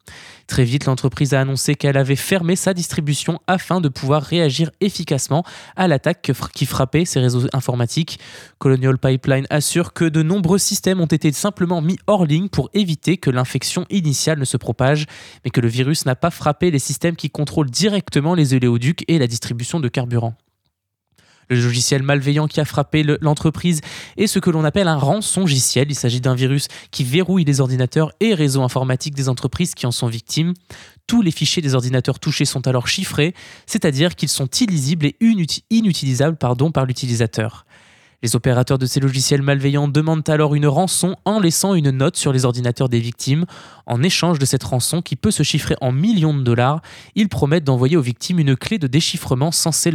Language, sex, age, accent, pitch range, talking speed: French, male, 20-39, French, 130-170 Hz, 185 wpm